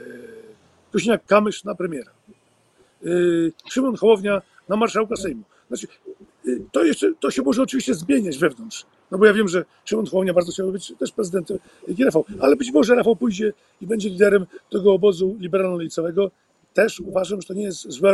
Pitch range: 170-210 Hz